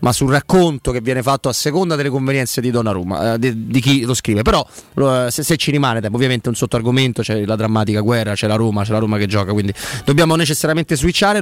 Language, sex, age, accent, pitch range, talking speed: Italian, male, 30-49, native, 125-165 Hz, 240 wpm